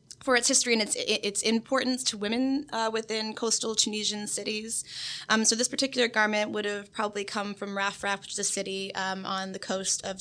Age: 20-39